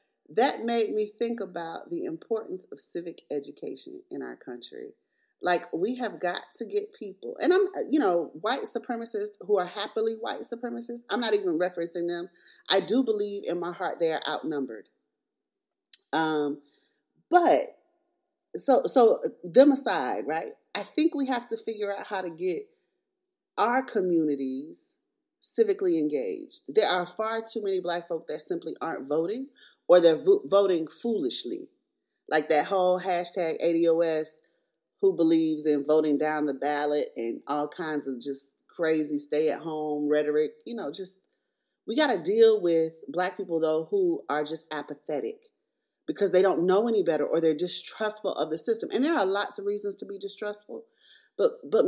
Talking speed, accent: 160 wpm, American